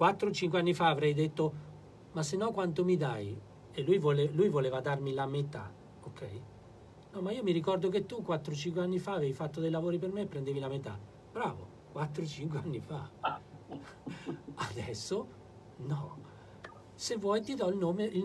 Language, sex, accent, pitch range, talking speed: Italian, male, native, 115-160 Hz, 175 wpm